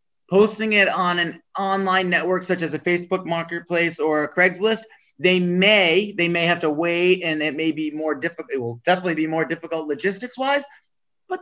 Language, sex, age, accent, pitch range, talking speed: English, male, 30-49, American, 165-215 Hz, 190 wpm